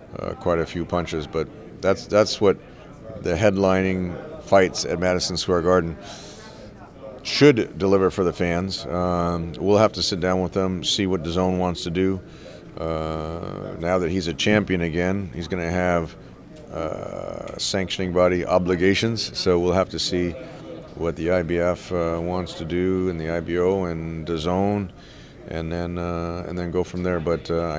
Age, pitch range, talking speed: 40-59, 85-100 Hz, 165 wpm